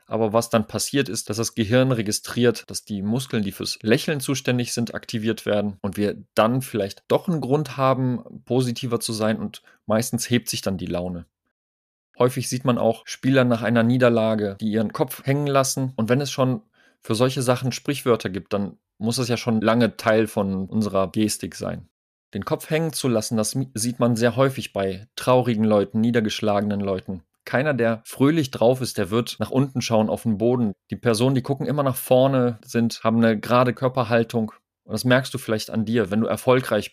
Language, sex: German, male